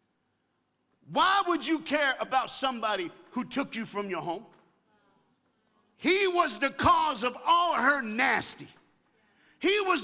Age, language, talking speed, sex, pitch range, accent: 50-69, English, 130 wpm, male, 235-360 Hz, American